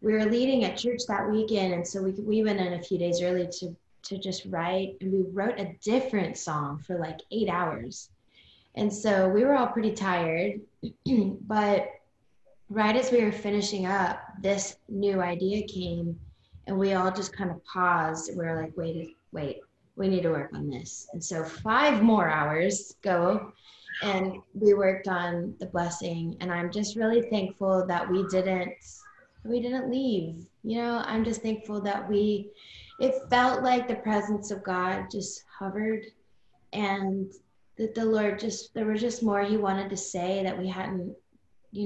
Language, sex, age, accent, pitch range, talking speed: English, female, 20-39, American, 185-215 Hz, 175 wpm